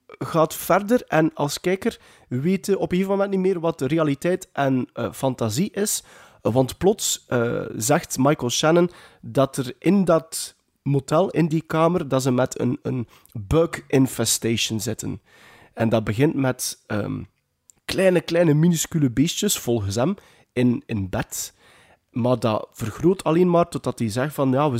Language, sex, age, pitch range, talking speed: Dutch, male, 30-49, 125-175 Hz, 160 wpm